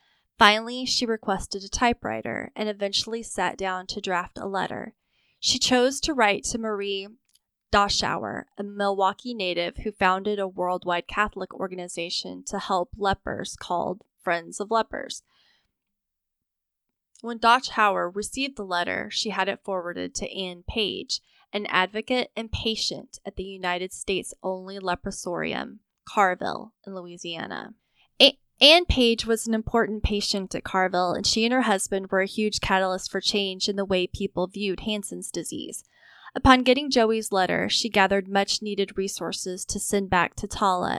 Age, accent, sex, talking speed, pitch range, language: 10-29, American, female, 150 wpm, 185-225 Hz, English